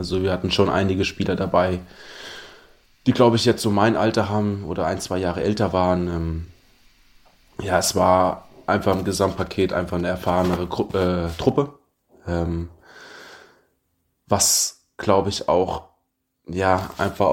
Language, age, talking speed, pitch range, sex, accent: German, 20-39, 130 wpm, 90-105 Hz, male, German